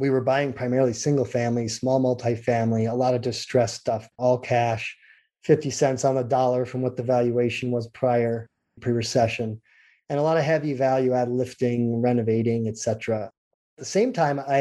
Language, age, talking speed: English, 30-49, 175 wpm